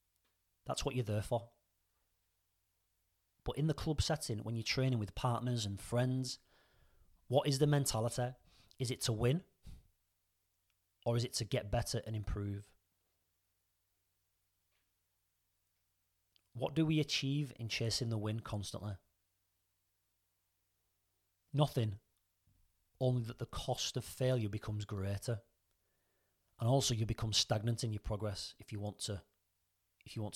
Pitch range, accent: 90-120 Hz, British